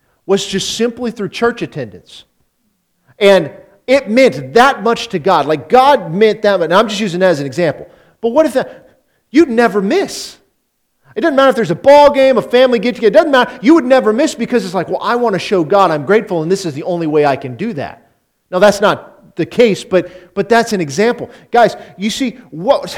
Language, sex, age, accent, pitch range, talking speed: English, male, 40-59, American, 170-240 Hz, 225 wpm